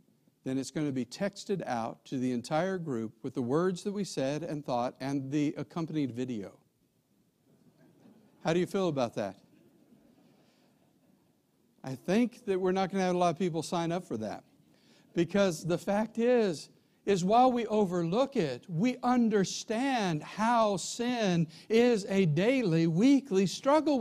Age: 60-79